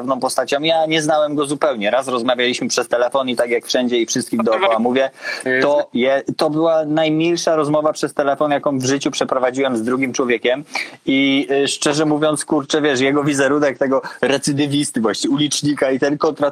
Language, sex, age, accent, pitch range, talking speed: Polish, male, 20-39, native, 130-170 Hz, 155 wpm